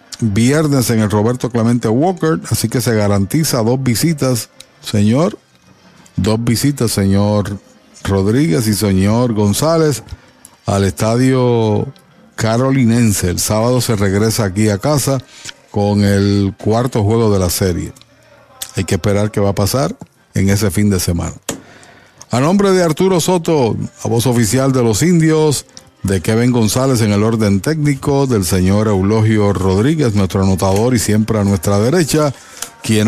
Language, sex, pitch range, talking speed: Spanish, male, 100-135 Hz, 145 wpm